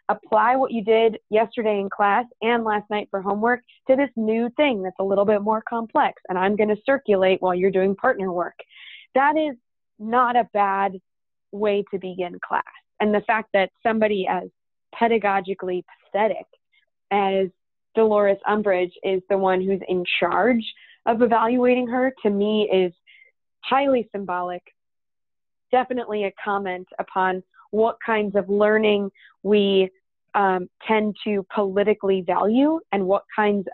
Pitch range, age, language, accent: 195-230 Hz, 20-39, English, American